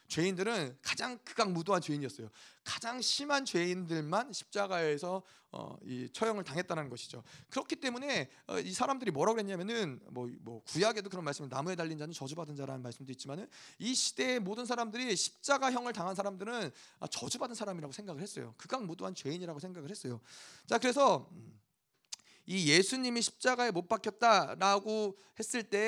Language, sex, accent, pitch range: Korean, male, native, 155-225 Hz